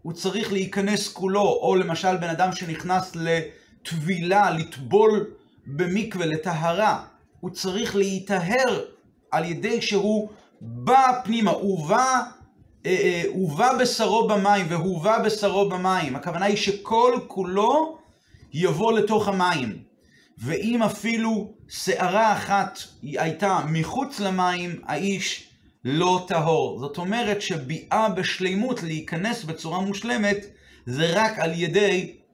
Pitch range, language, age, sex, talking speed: 170-215 Hz, Hebrew, 40-59, male, 110 wpm